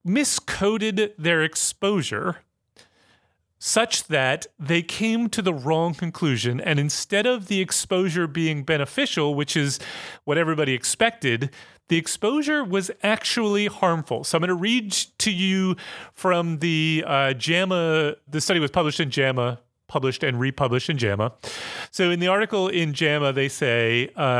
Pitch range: 135-175 Hz